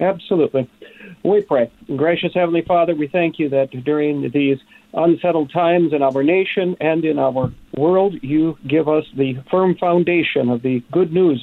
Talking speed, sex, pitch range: 165 wpm, male, 150-190 Hz